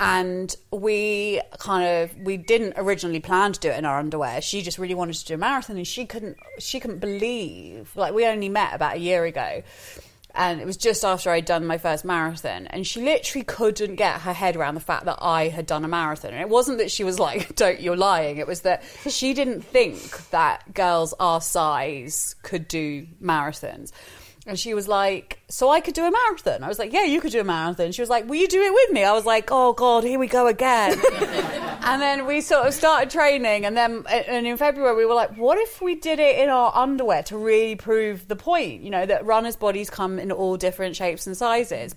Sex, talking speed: female, 230 wpm